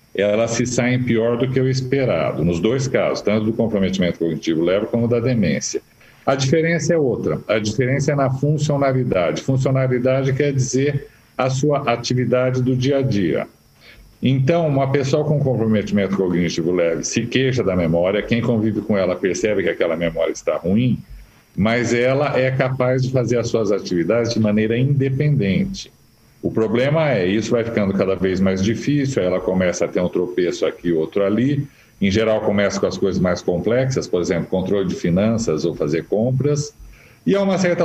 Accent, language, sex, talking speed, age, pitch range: Brazilian, Portuguese, male, 175 wpm, 50-69, 110-135 Hz